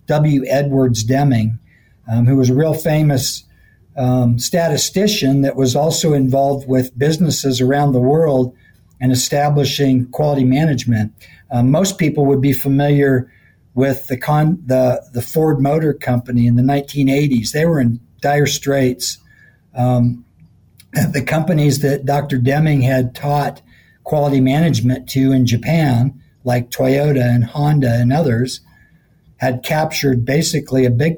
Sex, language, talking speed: male, English, 135 wpm